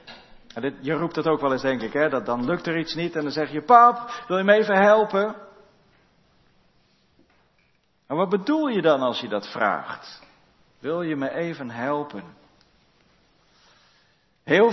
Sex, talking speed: male, 165 wpm